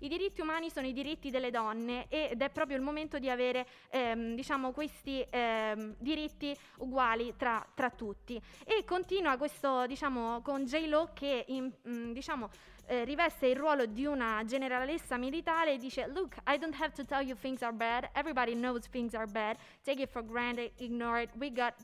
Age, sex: 20-39, female